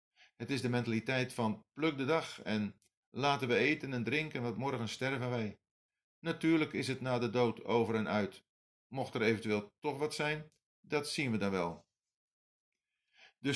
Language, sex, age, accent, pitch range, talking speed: Dutch, male, 50-69, Dutch, 110-145 Hz, 175 wpm